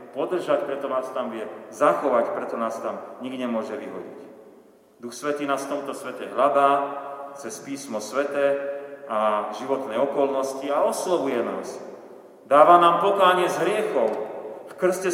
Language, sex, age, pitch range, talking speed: Slovak, male, 40-59, 135-175 Hz, 140 wpm